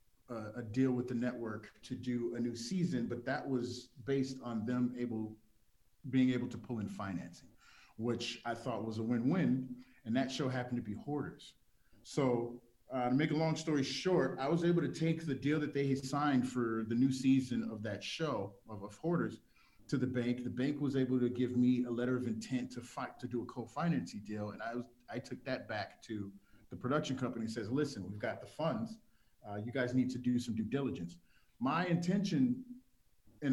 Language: English